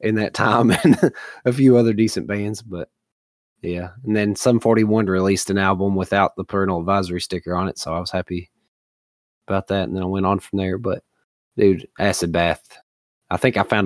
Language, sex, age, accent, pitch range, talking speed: English, male, 20-39, American, 90-105 Hz, 200 wpm